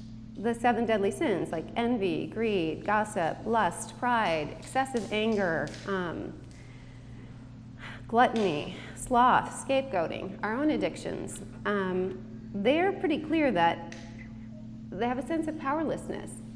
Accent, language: American, English